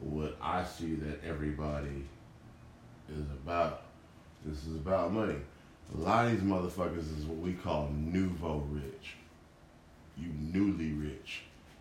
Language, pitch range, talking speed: English, 75-85 Hz, 125 wpm